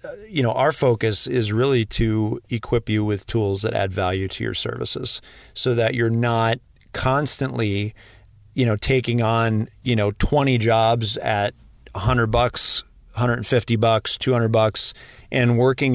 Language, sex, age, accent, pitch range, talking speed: English, male, 40-59, American, 105-120 Hz, 145 wpm